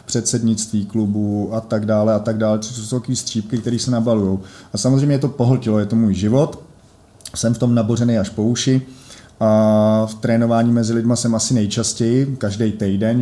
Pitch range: 110-120 Hz